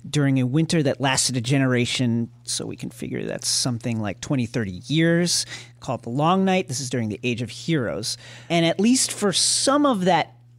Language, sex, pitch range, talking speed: English, male, 125-155 Hz, 200 wpm